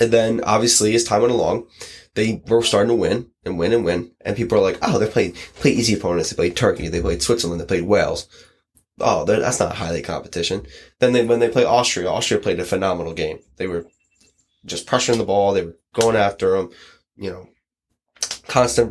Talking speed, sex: 205 wpm, male